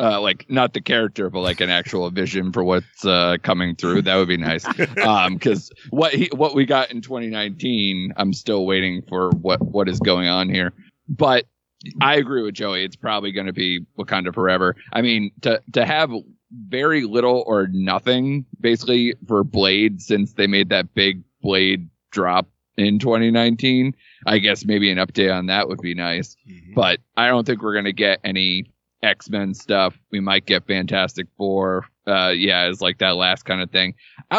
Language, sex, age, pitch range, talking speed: English, male, 30-49, 95-130 Hz, 185 wpm